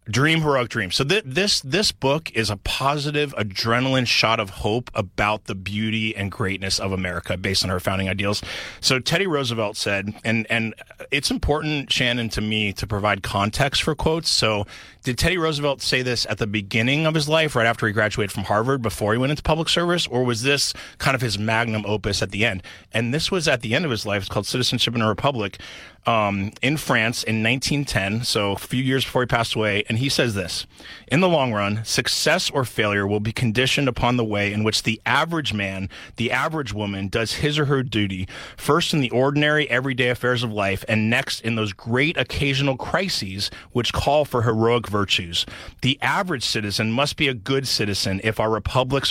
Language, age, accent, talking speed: English, 30-49, American, 205 wpm